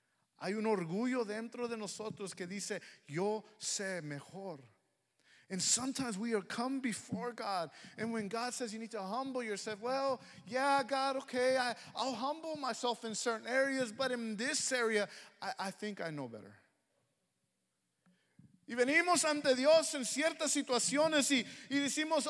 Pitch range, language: 185-270 Hz, English